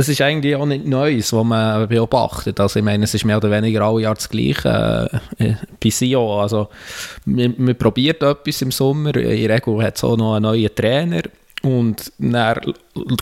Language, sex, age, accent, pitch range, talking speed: German, male, 20-39, Austrian, 105-120 Hz, 180 wpm